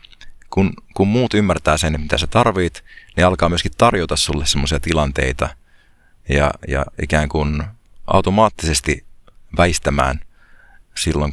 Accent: native